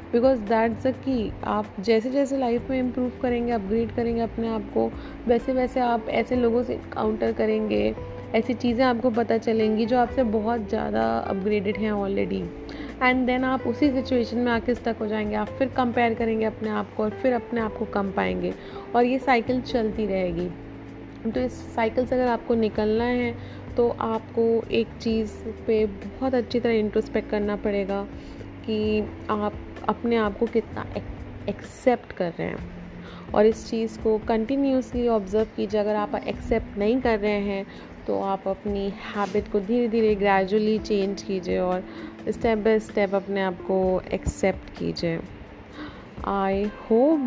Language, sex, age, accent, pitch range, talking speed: Hindi, female, 30-49, native, 205-240 Hz, 165 wpm